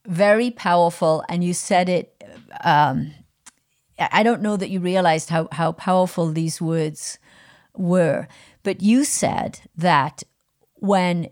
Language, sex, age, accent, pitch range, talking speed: English, female, 40-59, American, 170-215 Hz, 125 wpm